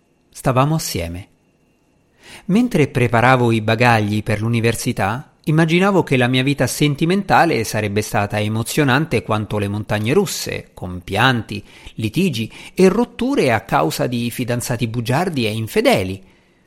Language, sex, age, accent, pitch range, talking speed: Italian, male, 50-69, native, 115-180 Hz, 120 wpm